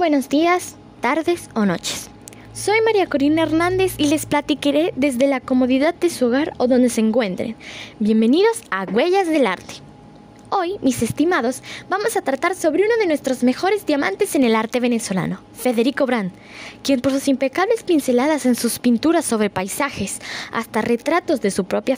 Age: 10-29